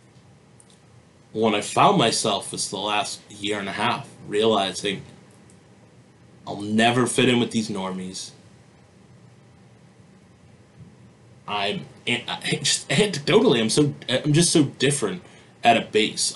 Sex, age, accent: male, 30-49, American